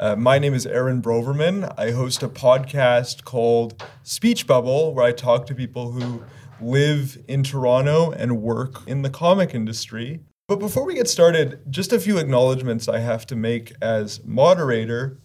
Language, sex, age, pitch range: English, male, 30-49, 120-150 Hz